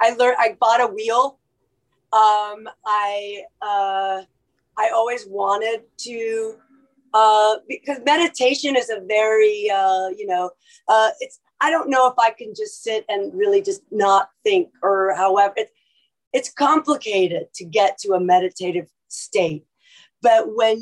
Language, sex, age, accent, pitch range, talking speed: English, female, 30-49, American, 195-250 Hz, 145 wpm